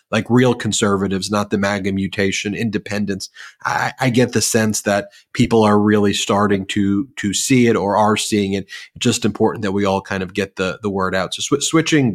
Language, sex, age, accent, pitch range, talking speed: English, male, 30-49, American, 100-110 Hz, 205 wpm